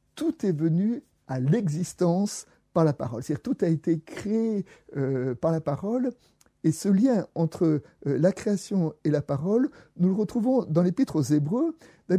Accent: French